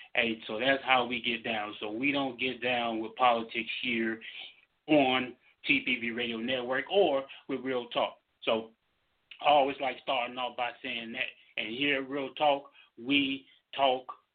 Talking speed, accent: 165 wpm, American